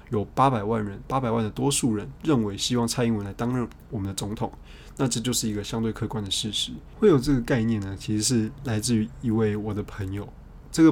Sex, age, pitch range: male, 20-39, 105-120 Hz